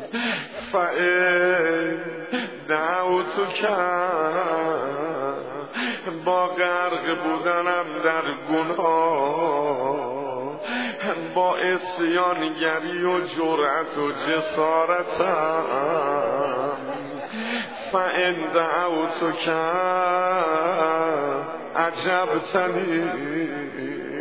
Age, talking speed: 50-69, 45 wpm